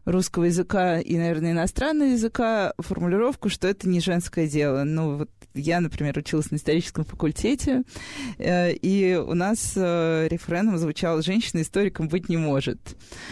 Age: 20-39